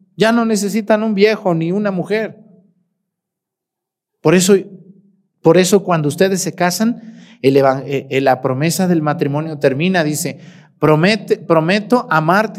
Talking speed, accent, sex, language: 130 wpm, Mexican, male, Spanish